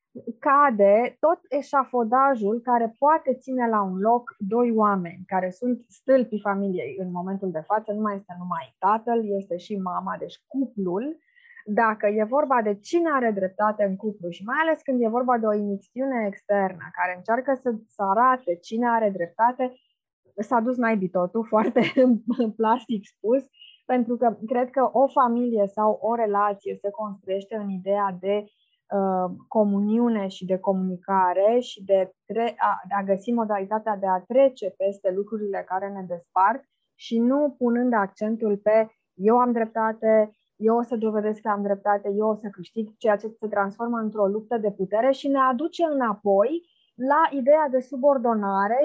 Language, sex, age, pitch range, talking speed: Romanian, female, 20-39, 200-245 Hz, 160 wpm